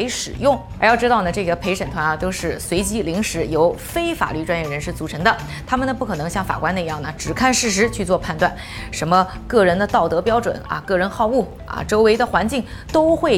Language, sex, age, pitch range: Chinese, female, 20-39, 175-250 Hz